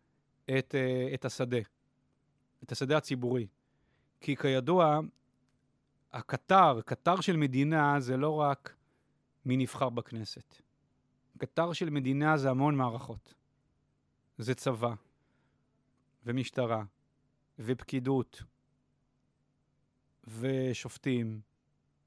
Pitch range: 130-155 Hz